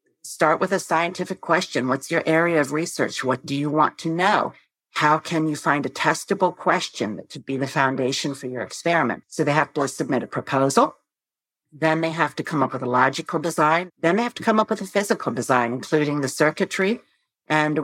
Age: 50-69